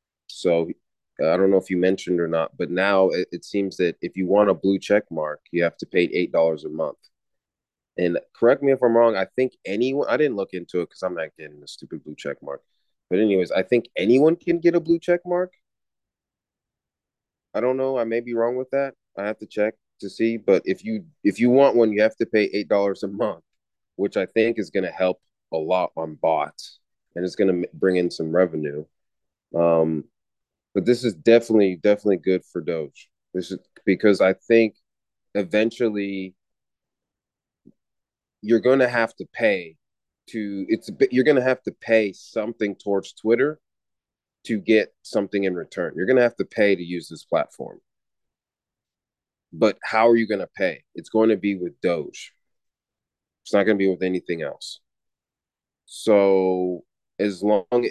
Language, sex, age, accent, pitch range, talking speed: English, male, 30-49, American, 90-115 Hz, 195 wpm